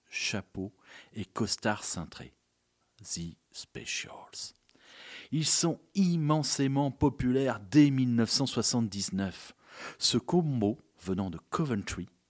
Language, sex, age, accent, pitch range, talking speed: French, male, 50-69, French, 95-135 Hz, 85 wpm